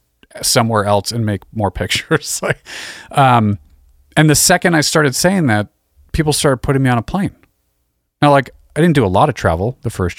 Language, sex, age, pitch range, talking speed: English, male, 40-59, 95-125 Hz, 195 wpm